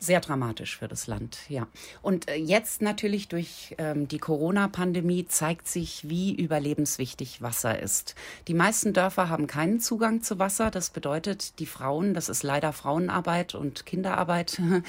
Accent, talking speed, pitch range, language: German, 150 wpm, 140-175 Hz, German